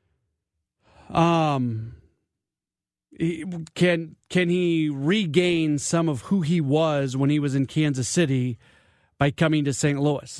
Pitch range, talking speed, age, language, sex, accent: 135-175 Hz, 120 wpm, 40-59, English, male, American